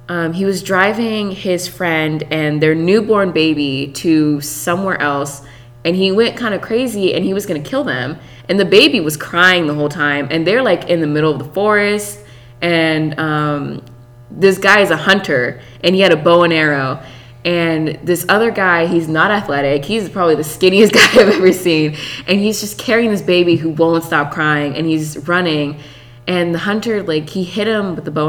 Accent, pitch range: American, 150-190 Hz